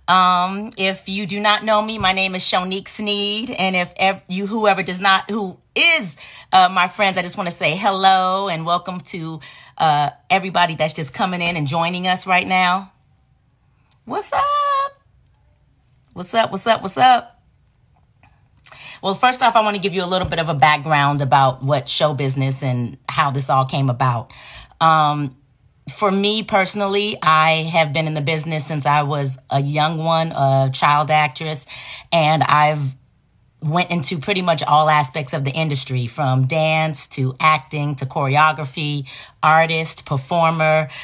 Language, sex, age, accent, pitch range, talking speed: English, female, 40-59, American, 135-175 Hz, 165 wpm